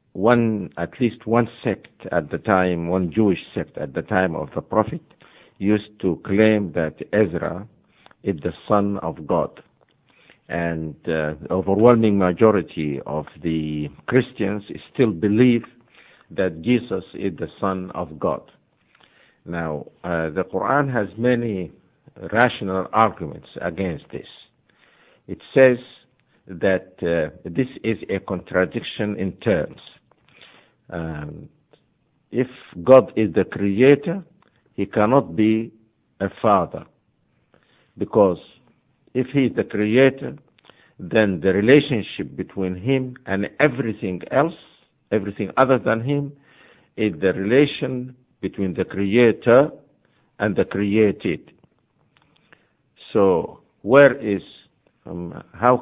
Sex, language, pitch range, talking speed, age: male, English, 90-125 Hz, 115 wpm, 50-69